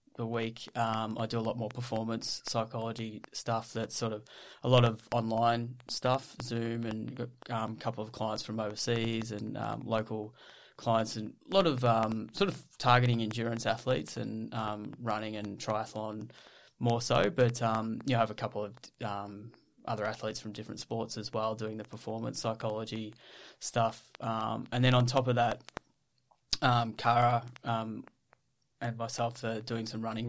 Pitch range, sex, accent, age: 110-120 Hz, male, Australian, 20-39